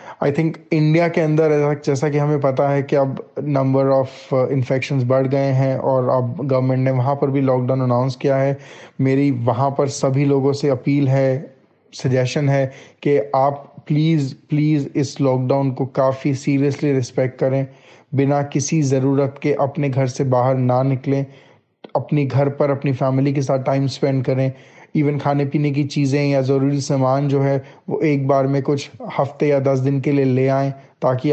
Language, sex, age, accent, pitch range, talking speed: Hindi, male, 20-39, native, 135-150 Hz, 180 wpm